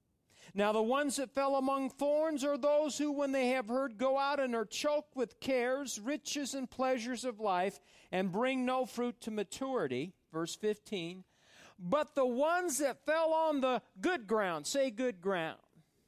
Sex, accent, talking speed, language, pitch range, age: male, American, 170 wpm, English, 185-270 Hz, 50-69